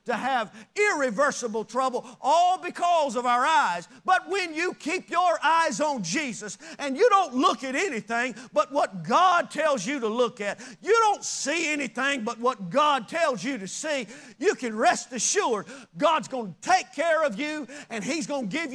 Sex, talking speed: male, 185 wpm